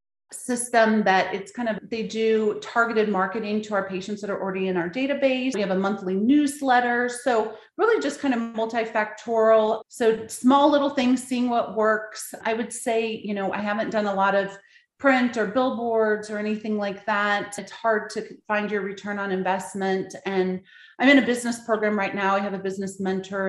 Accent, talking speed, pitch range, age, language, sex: American, 190 wpm, 195-235 Hz, 30-49, English, female